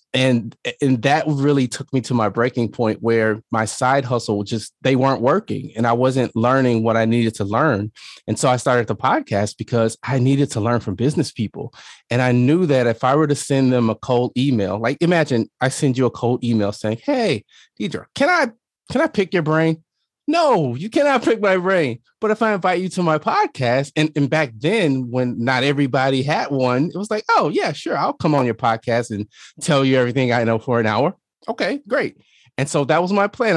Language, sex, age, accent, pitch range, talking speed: English, male, 30-49, American, 115-155 Hz, 220 wpm